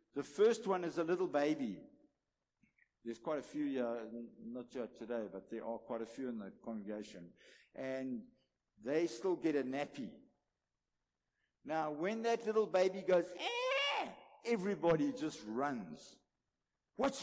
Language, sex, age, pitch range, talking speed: English, male, 60-79, 145-240 Hz, 135 wpm